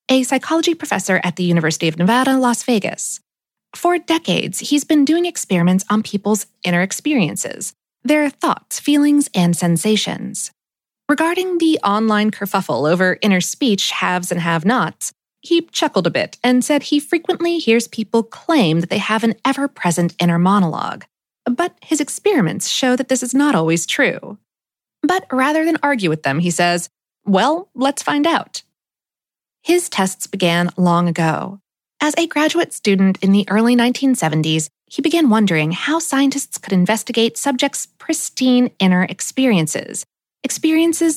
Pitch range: 180-290 Hz